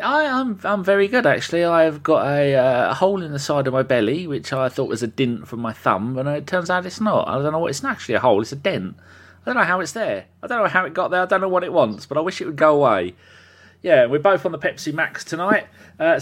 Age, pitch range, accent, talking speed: 30-49, 120-185 Hz, British, 300 wpm